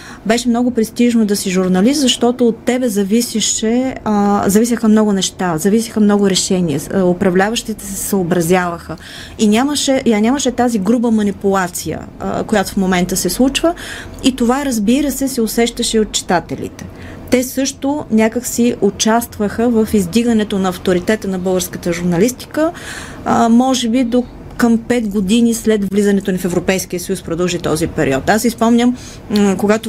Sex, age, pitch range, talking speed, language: female, 30-49, 185-230 Hz, 140 wpm, Bulgarian